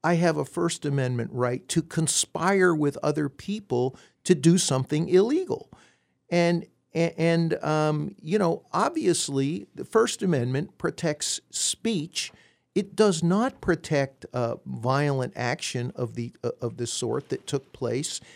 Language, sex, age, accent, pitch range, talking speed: English, male, 50-69, American, 125-170 Hz, 135 wpm